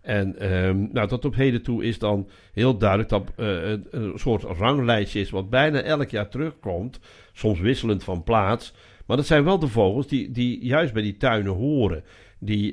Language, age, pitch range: Dutch, 60-79, 100-125 Hz